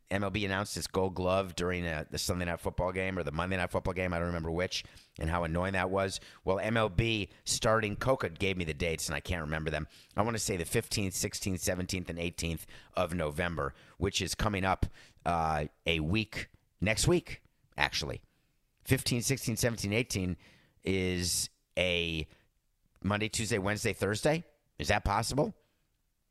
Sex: male